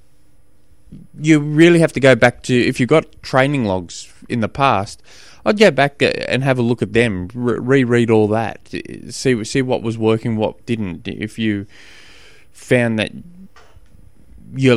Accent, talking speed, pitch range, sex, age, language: Australian, 160 wpm, 100-120 Hz, male, 20-39, English